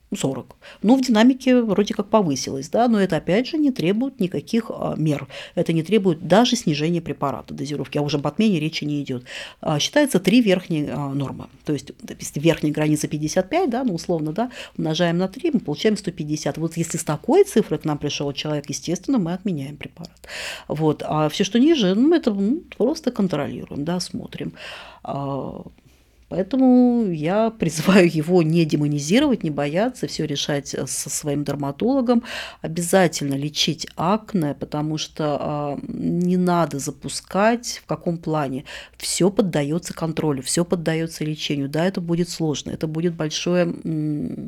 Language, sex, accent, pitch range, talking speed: Russian, female, native, 150-200 Hz, 155 wpm